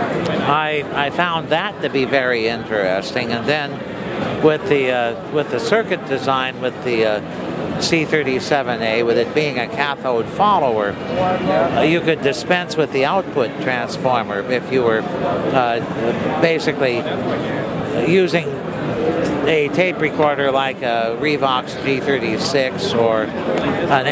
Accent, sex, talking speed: American, male, 135 wpm